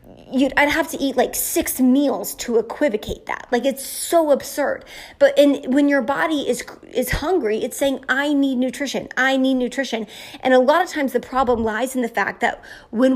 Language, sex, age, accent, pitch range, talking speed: English, female, 20-39, American, 235-285 Hz, 190 wpm